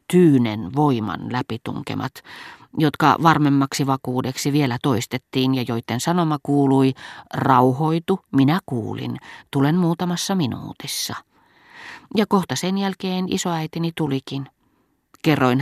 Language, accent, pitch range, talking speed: Finnish, native, 125-155 Hz, 95 wpm